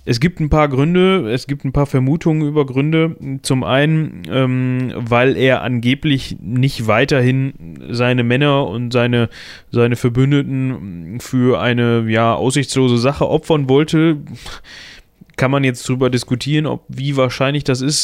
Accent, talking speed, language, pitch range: German, 145 wpm, German, 120-145 Hz